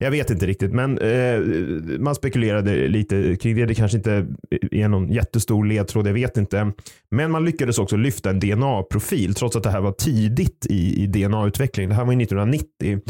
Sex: male